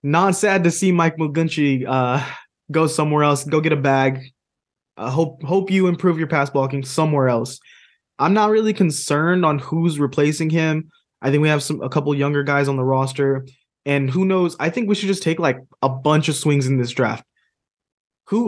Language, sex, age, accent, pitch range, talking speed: English, male, 20-39, American, 135-165 Hz, 205 wpm